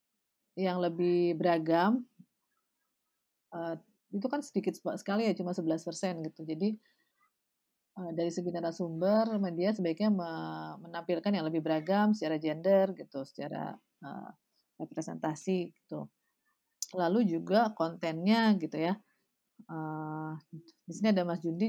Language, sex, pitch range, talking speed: Indonesian, female, 165-205 Hz, 100 wpm